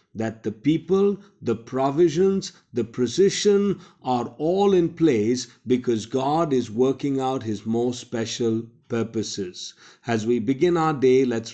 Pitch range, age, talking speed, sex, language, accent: 115-150 Hz, 50-69, 135 wpm, male, Hindi, native